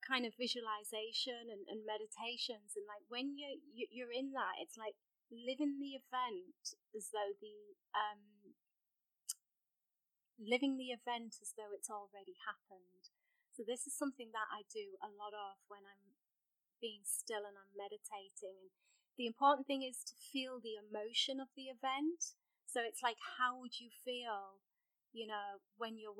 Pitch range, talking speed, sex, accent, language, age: 210-270 Hz, 160 wpm, female, British, English, 30-49